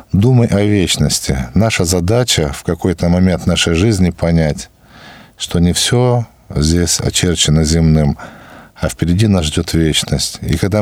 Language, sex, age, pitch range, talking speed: Russian, male, 50-69, 80-100 Hz, 135 wpm